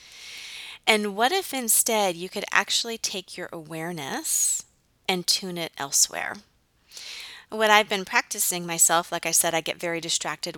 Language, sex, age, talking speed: English, female, 20-39, 150 wpm